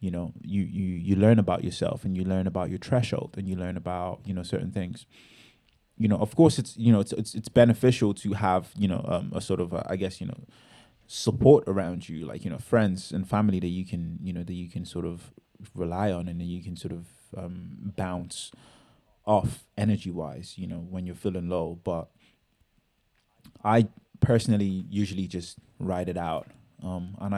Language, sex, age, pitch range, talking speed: English, male, 20-39, 95-115 Hz, 200 wpm